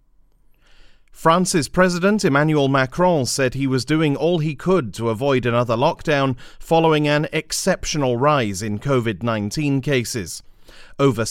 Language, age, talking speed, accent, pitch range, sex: English, 40-59, 120 wpm, British, 115-150 Hz, male